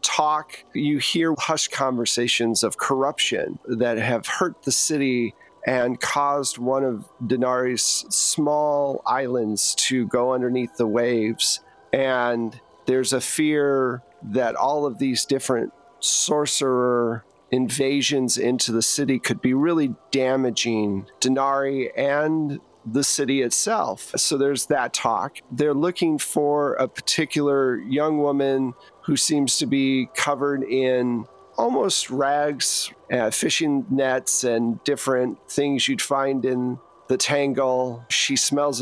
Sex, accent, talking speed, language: male, American, 120 wpm, English